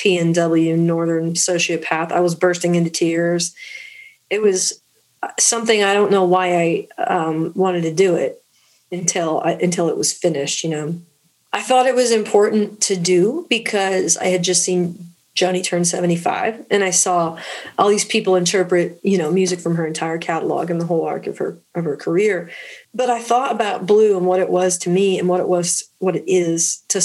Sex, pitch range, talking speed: female, 170-200 Hz, 190 wpm